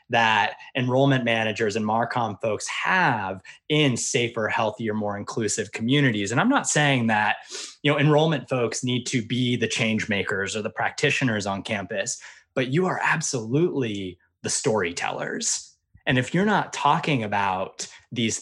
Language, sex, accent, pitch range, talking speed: English, male, American, 105-135 Hz, 150 wpm